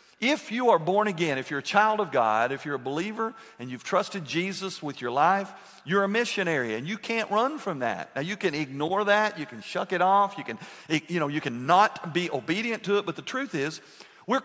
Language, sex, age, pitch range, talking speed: English, male, 50-69, 165-210 Hz, 235 wpm